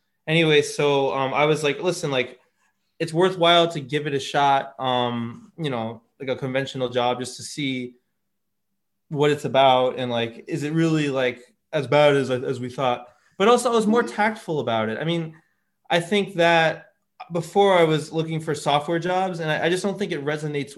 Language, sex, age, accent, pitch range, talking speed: English, male, 20-39, American, 130-160 Hz, 195 wpm